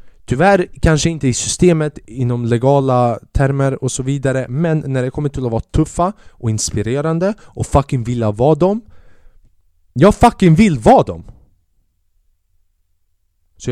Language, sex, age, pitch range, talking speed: Swedish, male, 20-39, 90-145 Hz, 140 wpm